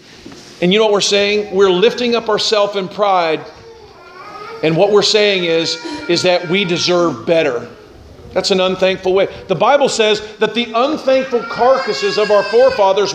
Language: English